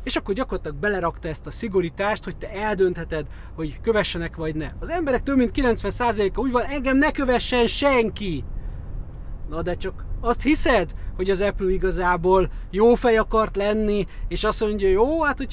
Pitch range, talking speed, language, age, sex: 175-230 Hz, 165 wpm, Hungarian, 30-49, male